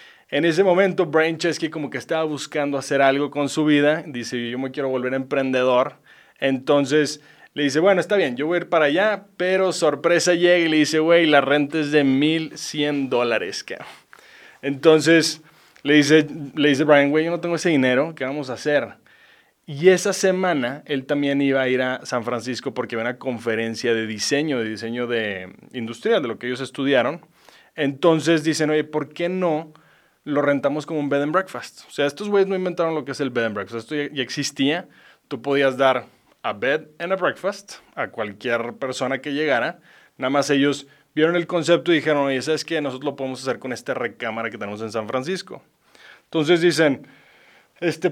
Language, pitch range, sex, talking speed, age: English, 130-165 Hz, male, 195 wpm, 20-39